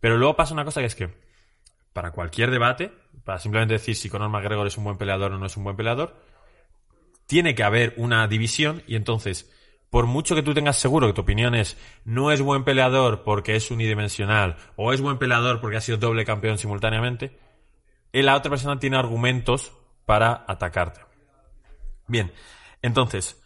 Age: 20-39